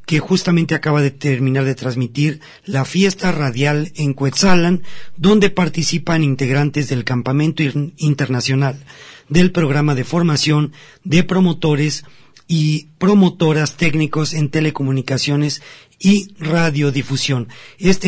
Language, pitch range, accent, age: Spanish, 140-170 Hz, Mexican, 40-59